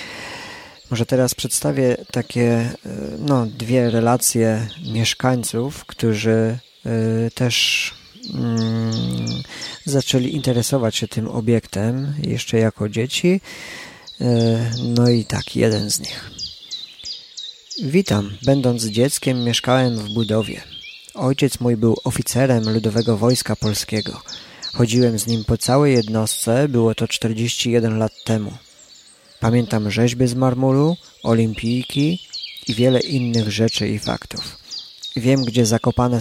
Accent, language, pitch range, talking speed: native, Polish, 110-130 Hz, 100 wpm